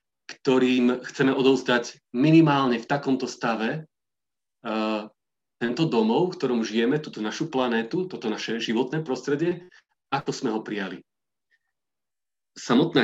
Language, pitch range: Slovak, 110-130 Hz